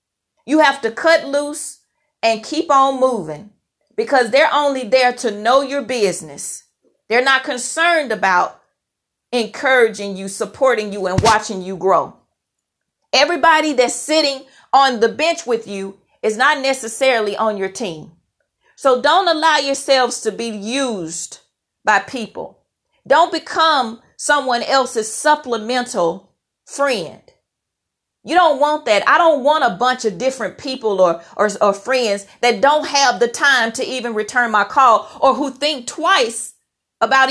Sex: female